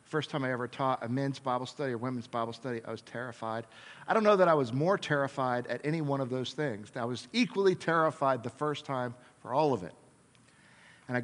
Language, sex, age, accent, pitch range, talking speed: English, male, 50-69, American, 125-155 Hz, 230 wpm